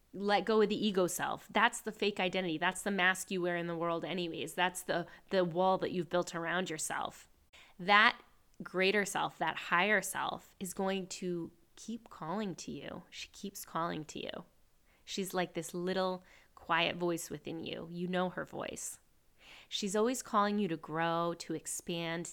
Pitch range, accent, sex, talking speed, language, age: 165-200 Hz, American, female, 175 wpm, English, 20-39